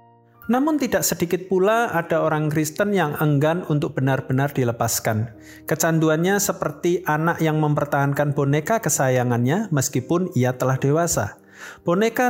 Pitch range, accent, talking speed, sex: 135-170 Hz, native, 115 wpm, male